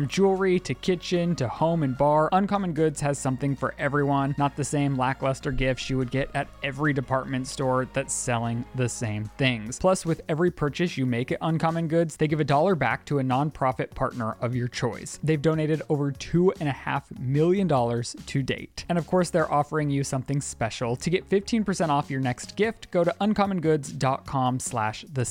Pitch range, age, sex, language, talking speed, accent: 130-160 Hz, 20-39, male, English, 195 wpm, American